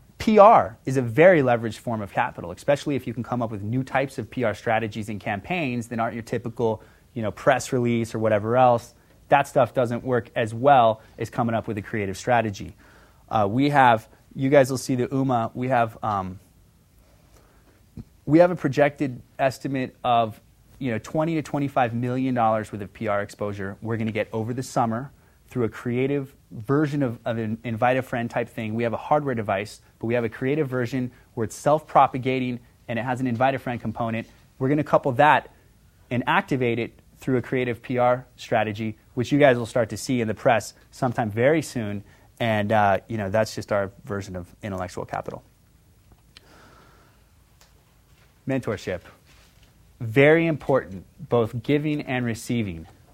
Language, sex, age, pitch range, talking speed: English, male, 30-49, 110-130 Hz, 175 wpm